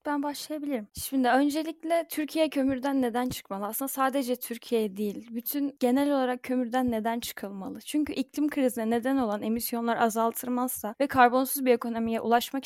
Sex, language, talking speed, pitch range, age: female, Turkish, 140 wpm, 230-270 Hz, 10-29